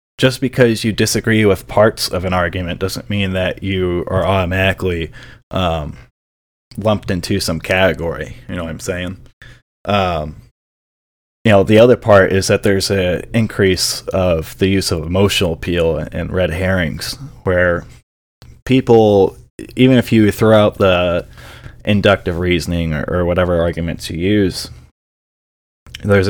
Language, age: English, 20-39